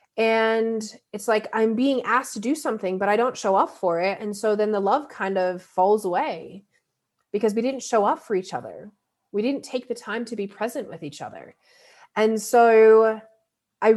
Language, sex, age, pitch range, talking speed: English, female, 30-49, 185-245 Hz, 200 wpm